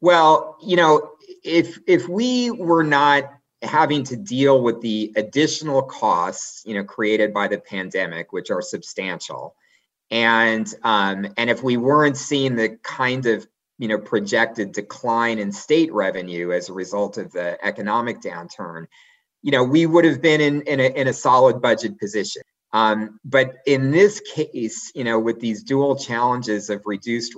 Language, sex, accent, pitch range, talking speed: English, male, American, 110-145 Hz, 165 wpm